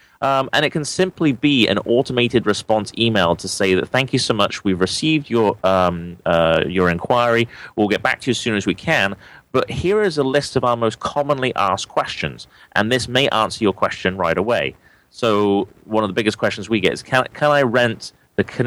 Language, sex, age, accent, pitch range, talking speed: English, male, 30-49, British, 95-125 Hz, 220 wpm